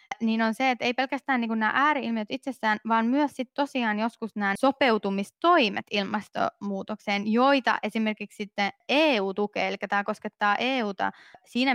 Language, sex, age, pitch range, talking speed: Finnish, female, 20-39, 205-260 Hz, 150 wpm